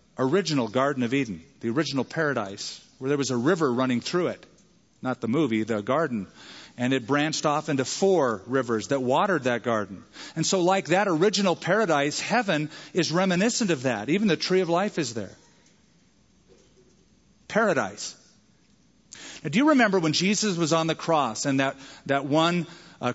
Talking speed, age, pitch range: 170 wpm, 40-59, 130-175 Hz